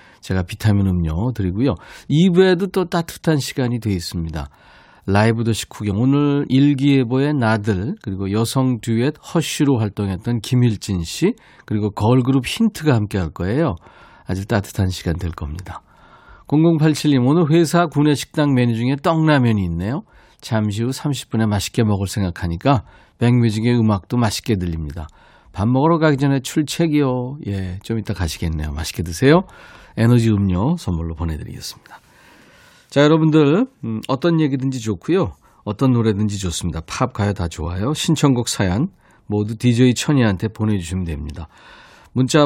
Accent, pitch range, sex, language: native, 100-145 Hz, male, Korean